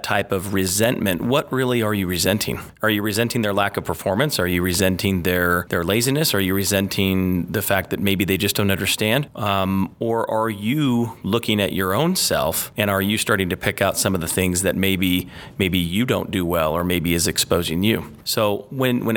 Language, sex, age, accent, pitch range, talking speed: English, male, 30-49, American, 95-115 Hz, 210 wpm